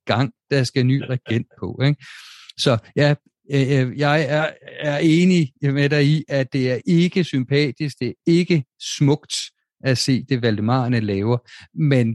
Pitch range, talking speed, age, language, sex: 115-135 Hz, 150 wpm, 50-69, Danish, male